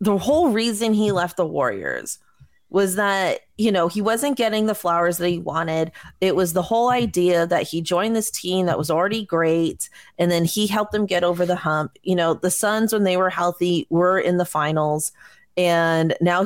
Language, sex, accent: English, female, American